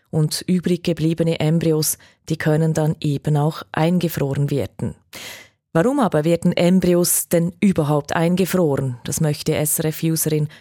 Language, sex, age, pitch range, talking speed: German, female, 30-49, 155-175 Hz, 120 wpm